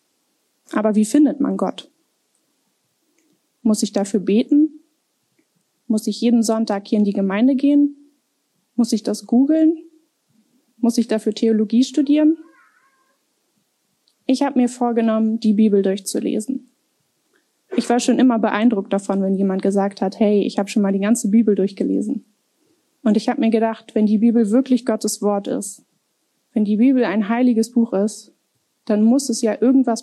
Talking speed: 155 wpm